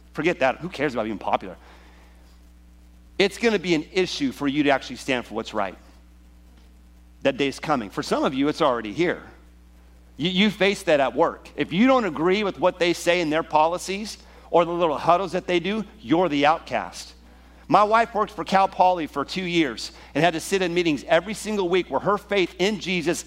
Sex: male